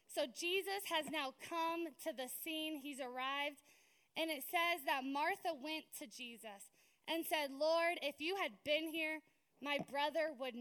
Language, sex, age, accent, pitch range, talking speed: English, female, 20-39, American, 260-320 Hz, 165 wpm